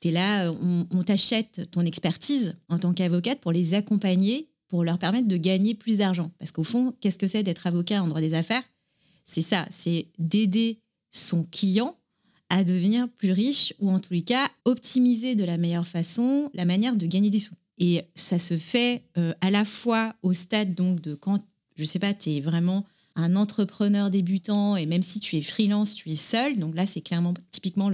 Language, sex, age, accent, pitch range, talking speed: French, female, 30-49, French, 170-210 Hz, 200 wpm